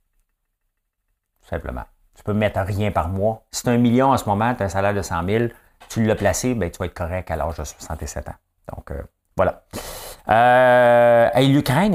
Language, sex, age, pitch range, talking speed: English, male, 60-79, 85-110 Hz, 190 wpm